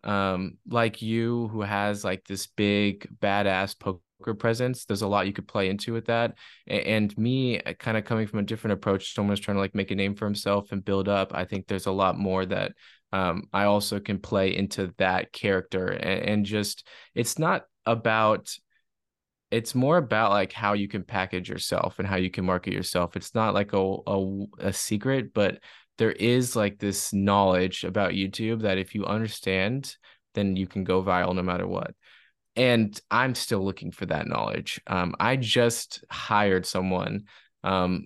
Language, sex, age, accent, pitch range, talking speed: English, male, 20-39, American, 95-110 Hz, 185 wpm